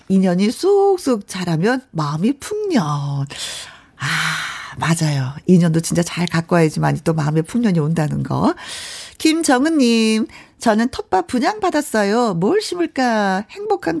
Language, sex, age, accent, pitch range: Korean, female, 40-59, native, 170-265 Hz